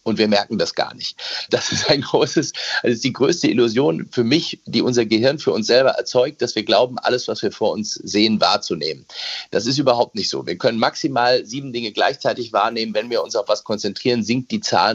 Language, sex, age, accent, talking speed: German, male, 50-69, German, 220 wpm